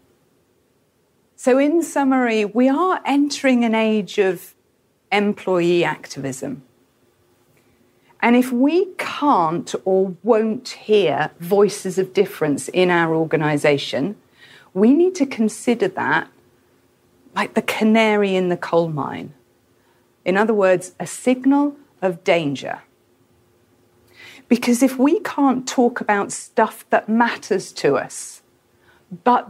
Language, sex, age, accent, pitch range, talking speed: English, female, 40-59, British, 160-245 Hz, 110 wpm